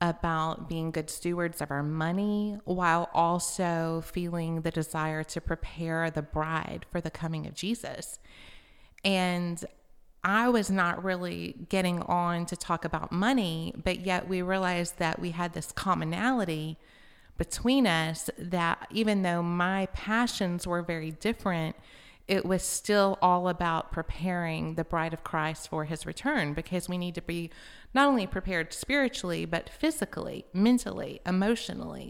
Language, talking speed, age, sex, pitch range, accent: English, 145 wpm, 30-49, female, 170-200 Hz, American